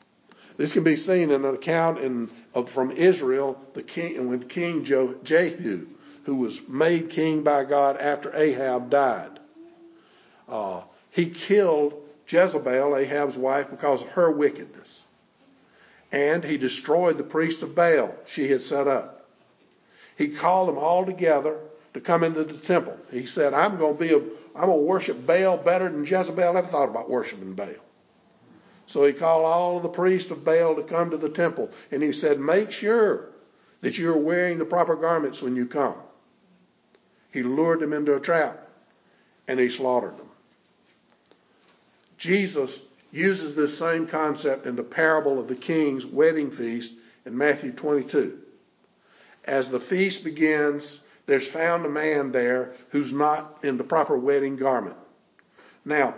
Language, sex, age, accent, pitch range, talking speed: English, male, 50-69, American, 140-170 Hz, 160 wpm